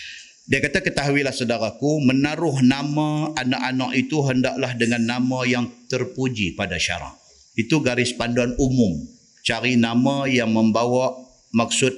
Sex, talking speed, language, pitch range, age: male, 125 wpm, Malay, 125-170 Hz, 50-69